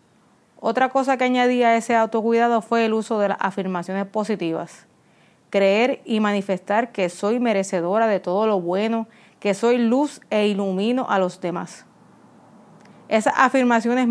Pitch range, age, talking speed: 200-235 Hz, 30-49, 145 wpm